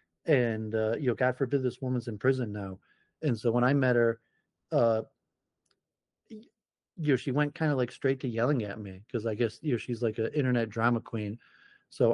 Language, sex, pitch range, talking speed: English, male, 110-125 Hz, 210 wpm